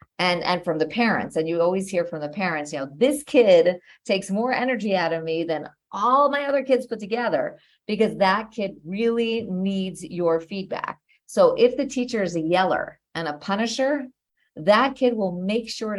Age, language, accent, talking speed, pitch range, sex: 40-59, English, American, 190 wpm, 155-215 Hz, female